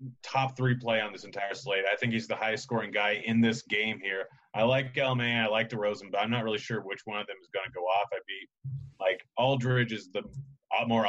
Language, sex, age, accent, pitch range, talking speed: English, male, 30-49, American, 100-125 Hz, 250 wpm